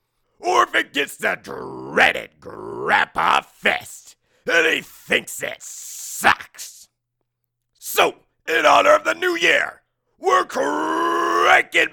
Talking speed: 110 wpm